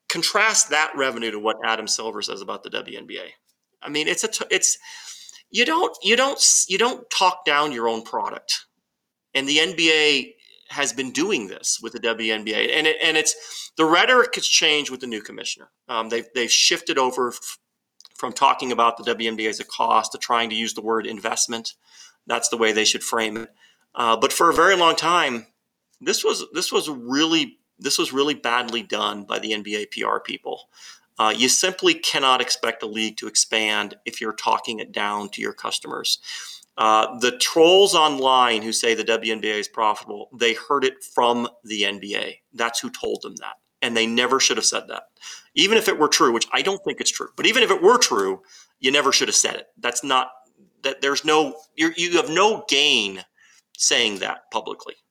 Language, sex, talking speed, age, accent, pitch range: English, male, 190 wpm, 30-49, American, 115-185 Hz